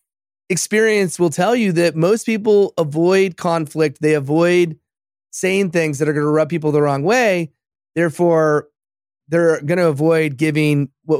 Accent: American